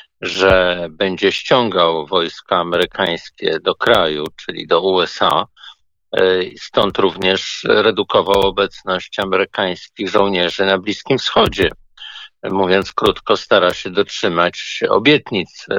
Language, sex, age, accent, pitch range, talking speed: Polish, male, 50-69, native, 95-120 Hz, 95 wpm